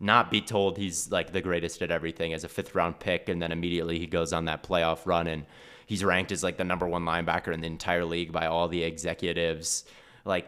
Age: 20-39